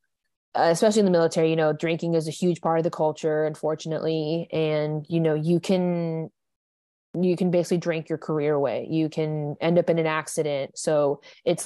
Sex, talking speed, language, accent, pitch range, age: female, 185 wpm, English, American, 155-180 Hz, 20-39